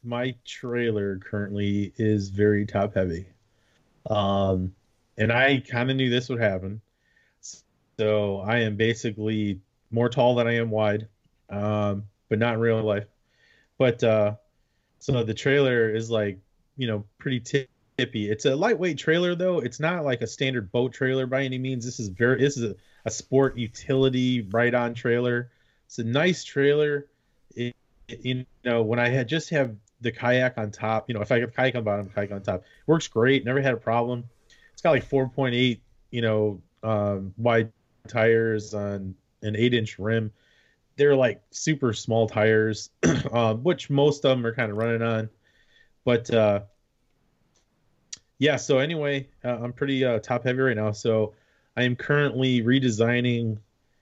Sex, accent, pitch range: male, American, 110-130 Hz